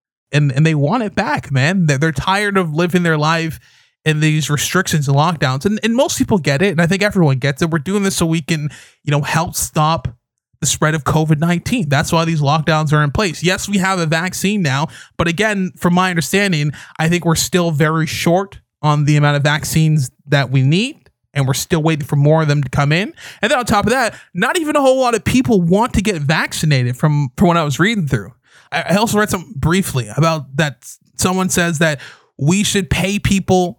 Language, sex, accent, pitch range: English, male, American, 150-195 Hz